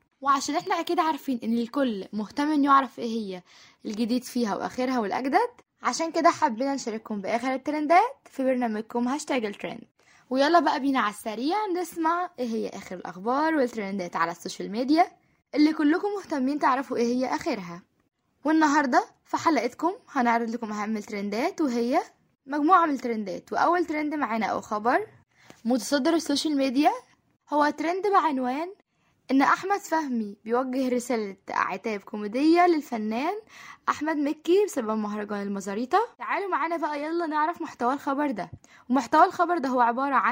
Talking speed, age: 135 wpm, 10-29